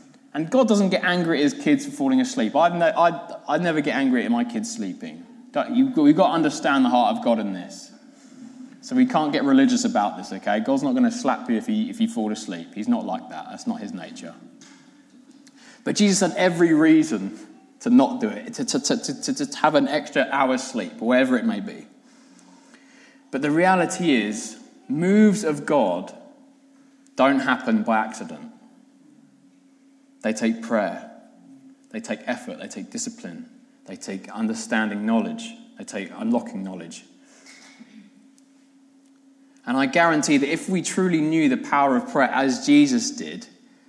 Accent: British